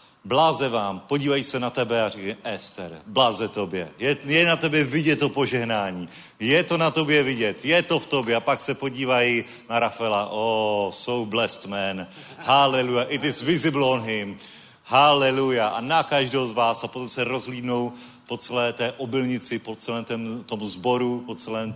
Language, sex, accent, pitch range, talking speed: Czech, male, native, 115-140 Hz, 175 wpm